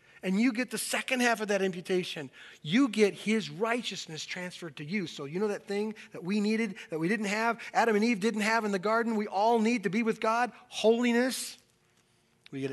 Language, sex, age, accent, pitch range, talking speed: English, male, 40-59, American, 155-230 Hz, 215 wpm